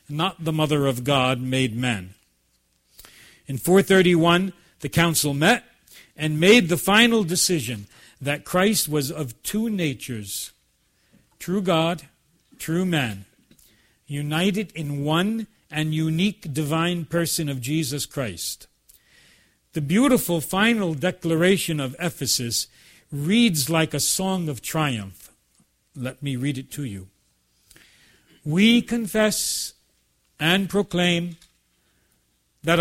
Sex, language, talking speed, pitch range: male, English, 110 wpm, 130-190 Hz